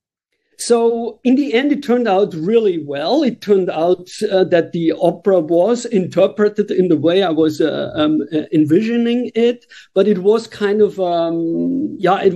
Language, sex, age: English, male, 50-69